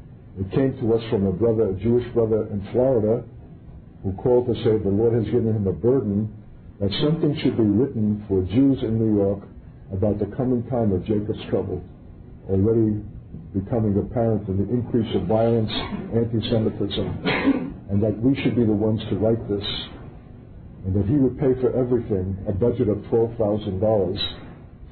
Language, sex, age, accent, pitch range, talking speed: English, male, 60-79, American, 100-115 Hz, 170 wpm